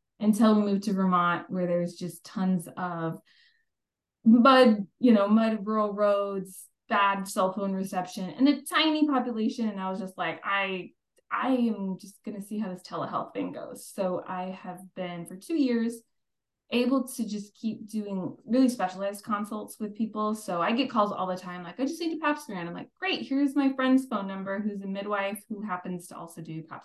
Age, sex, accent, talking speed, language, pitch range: 20-39, female, American, 200 wpm, English, 180-230 Hz